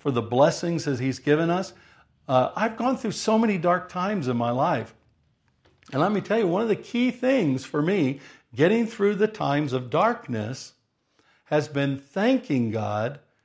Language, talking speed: English, 180 wpm